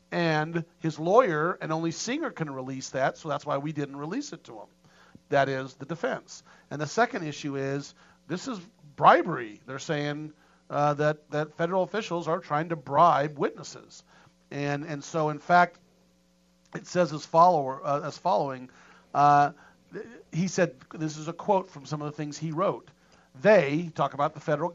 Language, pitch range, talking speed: English, 145-180 Hz, 175 wpm